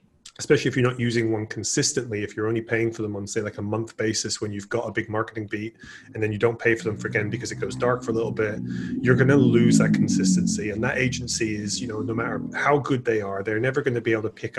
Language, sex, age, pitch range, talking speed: English, male, 30-49, 110-125 Hz, 285 wpm